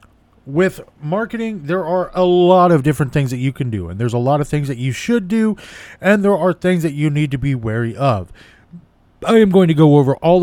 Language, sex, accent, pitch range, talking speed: English, male, American, 120-165 Hz, 235 wpm